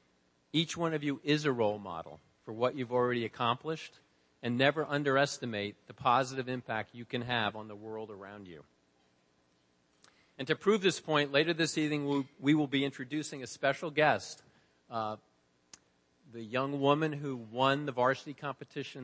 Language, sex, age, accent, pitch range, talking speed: English, male, 50-69, American, 115-150 Hz, 165 wpm